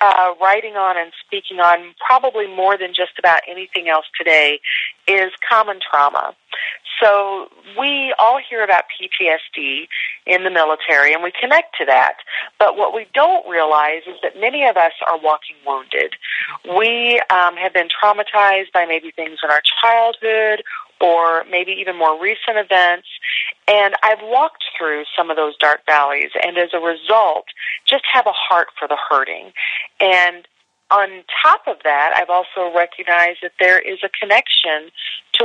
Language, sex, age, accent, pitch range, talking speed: English, female, 40-59, American, 165-210 Hz, 160 wpm